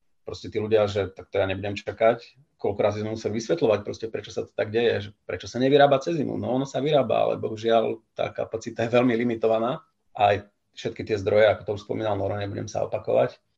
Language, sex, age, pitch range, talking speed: Slovak, male, 40-59, 110-130 Hz, 200 wpm